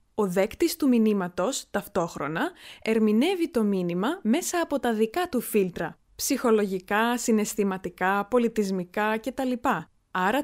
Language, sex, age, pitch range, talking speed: Greek, female, 20-39, 185-265 Hz, 110 wpm